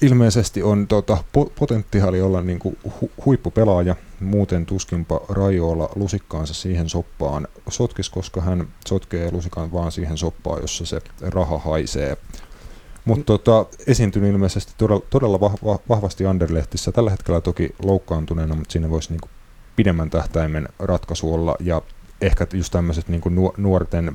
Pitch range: 80-95 Hz